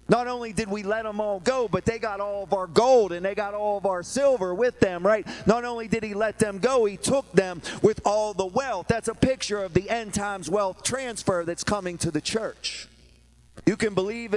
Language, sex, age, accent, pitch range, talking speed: English, male, 40-59, American, 180-225 Hz, 235 wpm